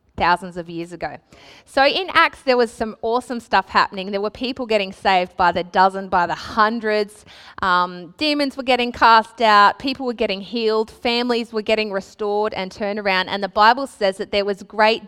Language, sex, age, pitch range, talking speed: English, female, 20-39, 195-240 Hz, 195 wpm